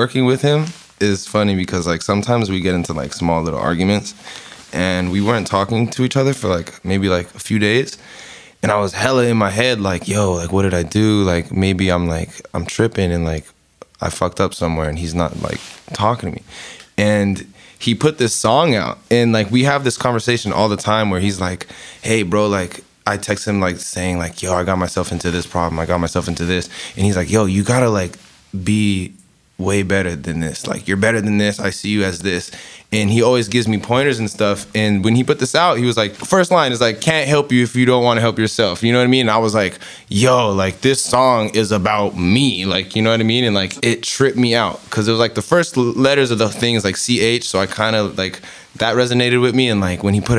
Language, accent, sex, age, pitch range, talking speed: English, American, male, 20-39, 90-115 Hz, 250 wpm